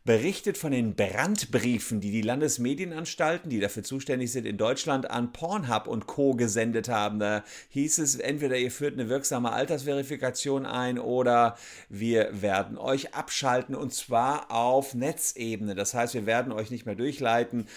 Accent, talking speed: German, 155 wpm